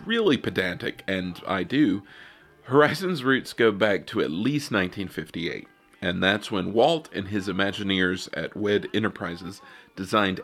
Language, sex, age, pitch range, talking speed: English, male, 40-59, 95-115 Hz, 140 wpm